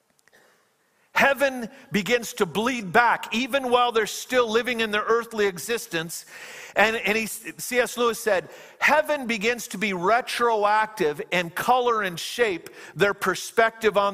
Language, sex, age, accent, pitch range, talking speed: English, male, 50-69, American, 175-225 Hz, 135 wpm